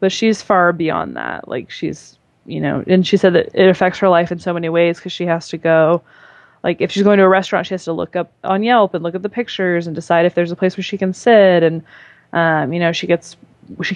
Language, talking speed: English, 265 wpm